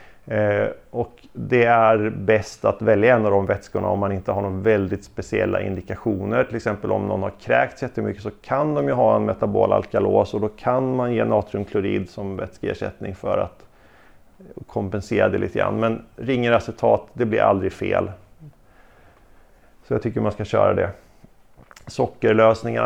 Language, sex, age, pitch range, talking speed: Swedish, male, 30-49, 105-115 Hz, 165 wpm